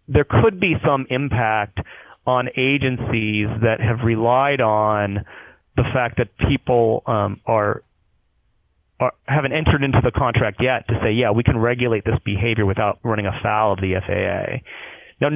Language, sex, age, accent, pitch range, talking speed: English, male, 30-49, American, 105-130 Hz, 150 wpm